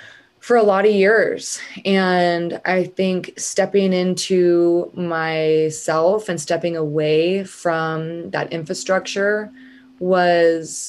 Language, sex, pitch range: English, female, 160-195 Hz